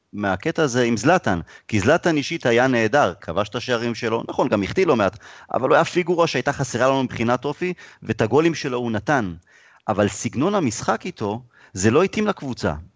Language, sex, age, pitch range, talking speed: Hebrew, male, 30-49, 105-145 Hz, 190 wpm